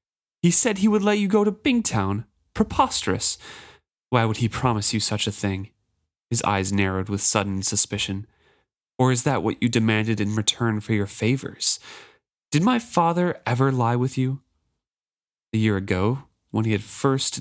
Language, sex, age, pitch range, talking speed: English, male, 30-49, 100-135 Hz, 170 wpm